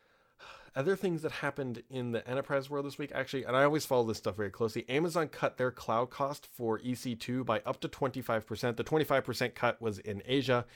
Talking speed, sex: 200 wpm, male